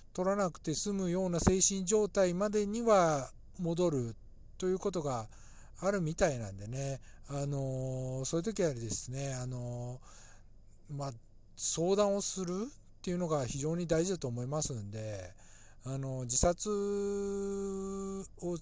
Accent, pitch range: native, 105-165 Hz